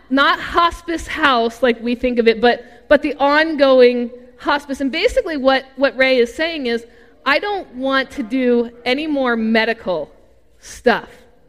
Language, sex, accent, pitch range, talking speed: English, female, American, 235-295 Hz, 155 wpm